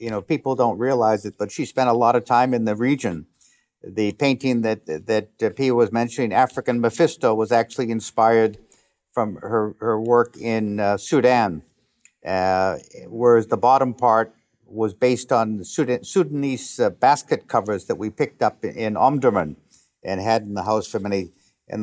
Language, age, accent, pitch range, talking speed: English, 60-79, American, 105-125 Hz, 175 wpm